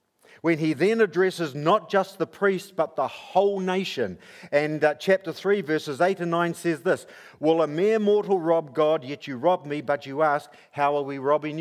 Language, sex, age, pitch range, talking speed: English, male, 50-69, 155-195 Hz, 200 wpm